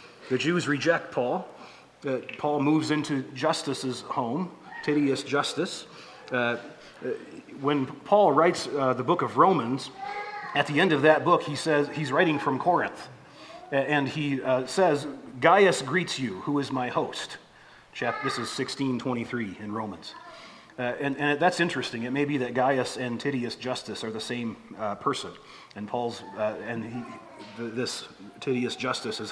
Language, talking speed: English, 160 wpm